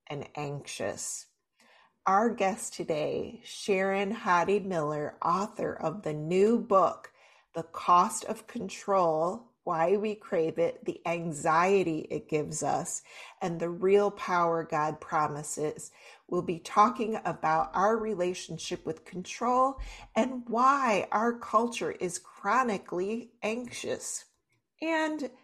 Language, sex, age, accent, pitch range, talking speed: English, female, 40-59, American, 165-225 Hz, 115 wpm